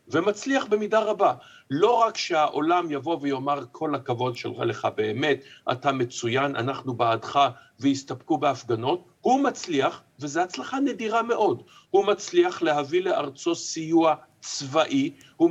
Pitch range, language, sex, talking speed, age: 140-210 Hz, Hebrew, male, 125 wpm, 50-69